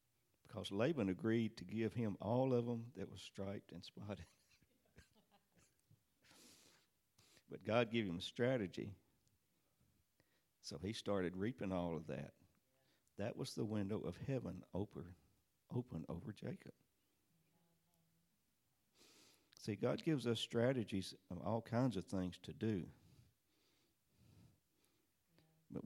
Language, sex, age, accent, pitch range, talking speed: English, male, 60-79, American, 95-115 Hz, 115 wpm